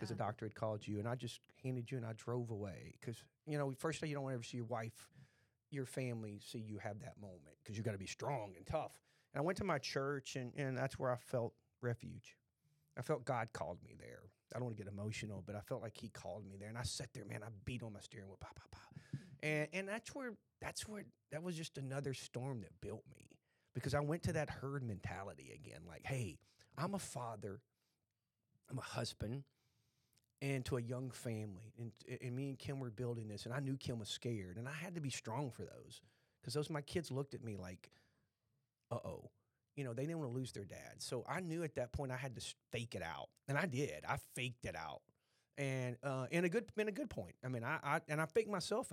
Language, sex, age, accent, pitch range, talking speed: English, male, 40-59, American, 115-145 Hz, 250 wpm